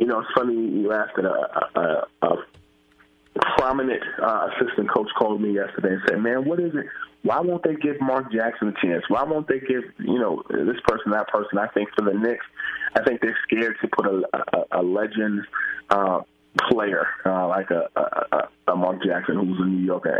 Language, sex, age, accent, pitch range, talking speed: English, male, 20-39, American, 95-115 Hz, 205 wpm